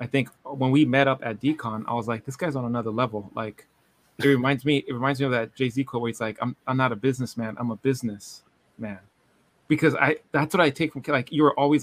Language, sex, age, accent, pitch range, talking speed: English, male, 30-49, American, 120-140 Hz, 250 wpm